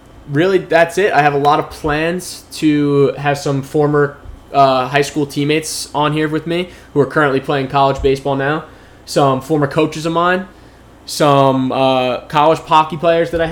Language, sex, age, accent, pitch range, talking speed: English, male, 20-39, American, 145-165 Hz, 180 wpm